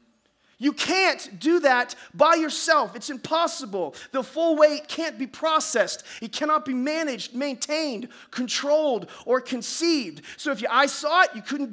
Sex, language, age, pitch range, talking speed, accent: male, English, 30-49, 245-315 Hz, 155 wpm, American